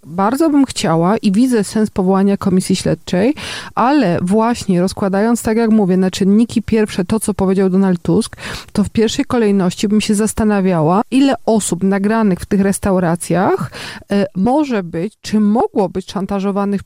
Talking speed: 150 wpm